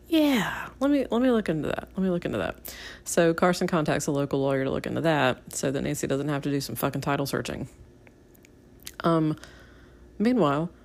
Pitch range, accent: 140-185 Hz, American